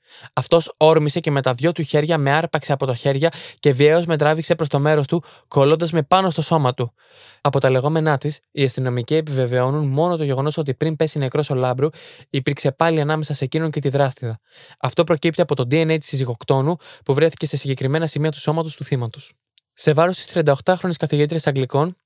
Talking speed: 195 wpm